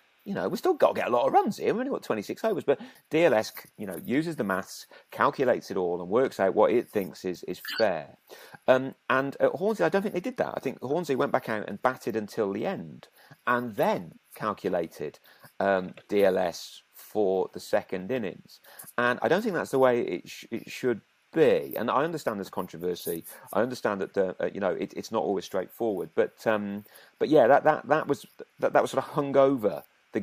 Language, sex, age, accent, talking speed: English, male, 40-59, British, 220 wpm